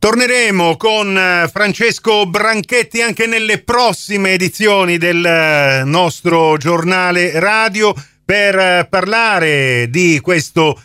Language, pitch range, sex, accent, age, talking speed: Italian, 140-195 Hz, male, native, 40-59, 90 wpm